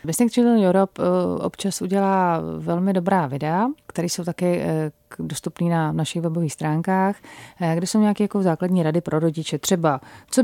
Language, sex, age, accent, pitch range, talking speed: Czech, female, 30-49, native, 155-180 Hz, 150 wpm